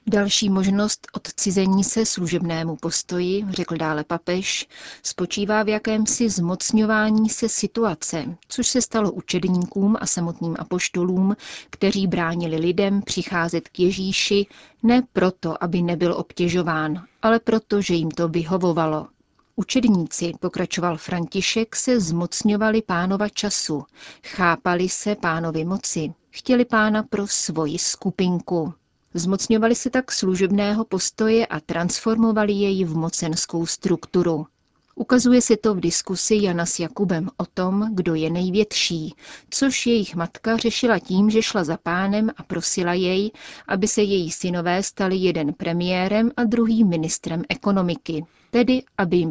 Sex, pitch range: female, 170-215 Hz